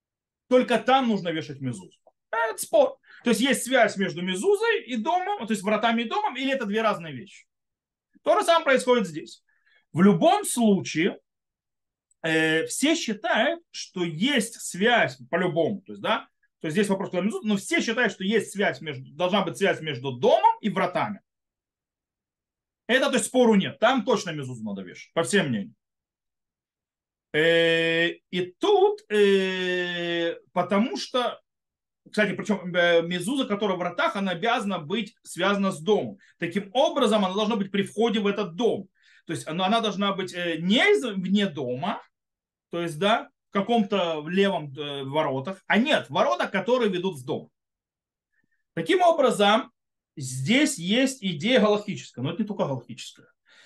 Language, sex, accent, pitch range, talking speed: Russian, male, native, 175-240 Hz, 150 wpm